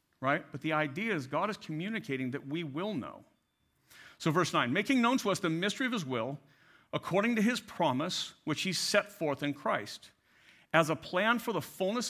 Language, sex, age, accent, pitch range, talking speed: English, male, 50-69, American, 165-240 Hz, 200 wpm